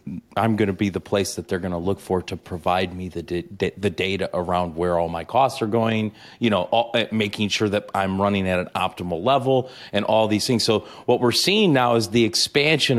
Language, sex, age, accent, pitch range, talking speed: English, male, 30-49, American, 90-115 Hz, 235 wpm